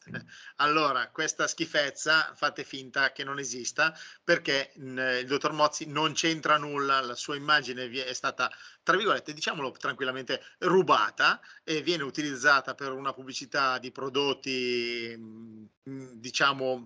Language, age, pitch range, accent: Italian, 40-59, 130-165 Hz, native